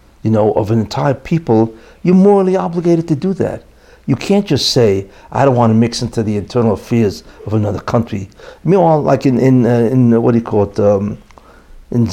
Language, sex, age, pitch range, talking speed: English, male, 60-79, 110-160 Hz, 210 wpm